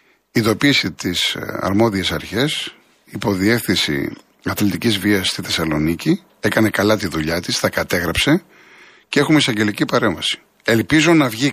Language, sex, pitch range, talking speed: Greek, male, 100-155 Hz, 125 wpm